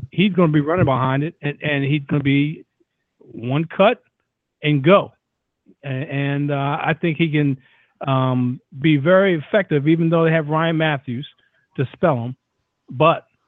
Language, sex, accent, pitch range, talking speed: English, male, American, 135-165 Hz, 170 wpm